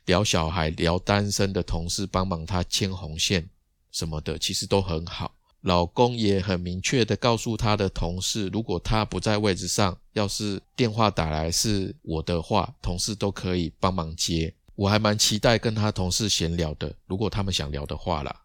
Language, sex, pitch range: Chinese, male, 85-110 Hz